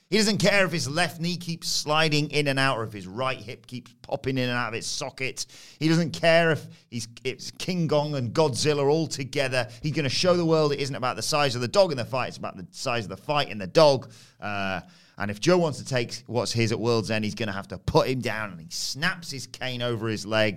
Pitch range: 105-140 Hz